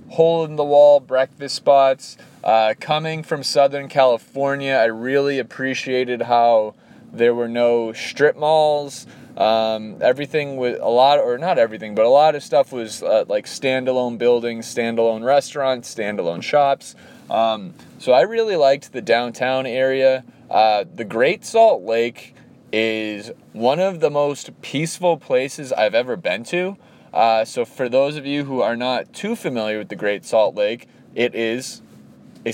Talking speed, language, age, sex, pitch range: 155 wpm, English, 20-39, male, 120-155 Hz